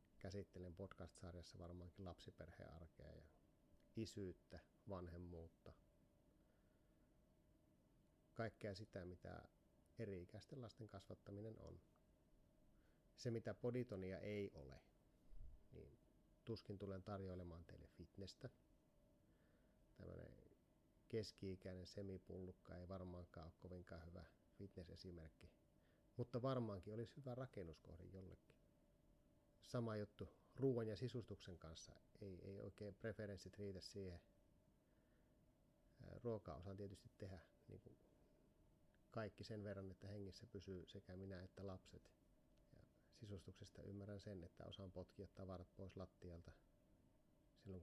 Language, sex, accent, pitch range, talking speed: Finnish, male, native, 90-105 Hz, 100 wpm